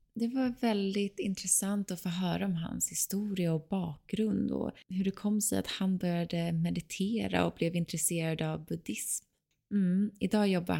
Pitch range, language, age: 160-195 Hz, Swedish, 20-39